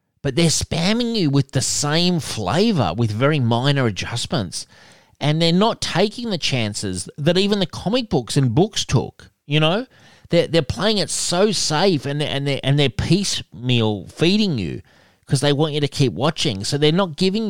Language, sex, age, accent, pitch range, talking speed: English, male, 30-49, Australian, 120-175 Hz, 175 wpm